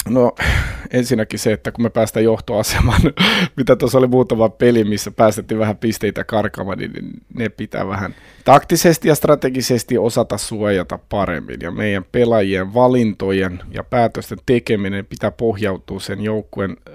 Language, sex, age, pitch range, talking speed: Finnish, male, 30-49, 105-120 Hz, 140 wpm